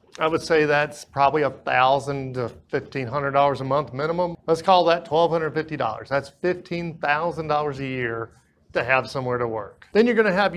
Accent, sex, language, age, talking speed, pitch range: American, male, English, 40-59, 205 wpm, 140-180 Hz